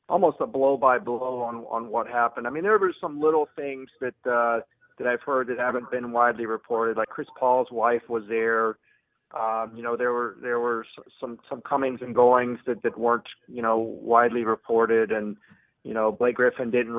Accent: American